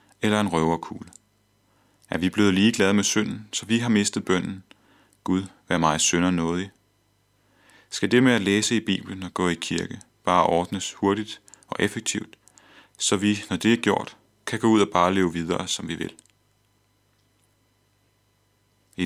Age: 30-49